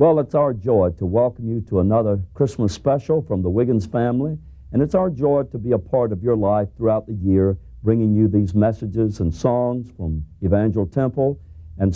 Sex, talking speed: male, 195 wpm